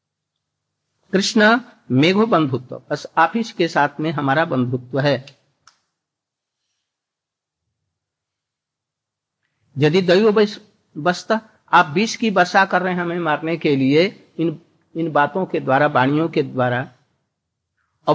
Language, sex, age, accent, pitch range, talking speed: Hindi, male, 60-79, native, 150-205 Hz, 95 wpm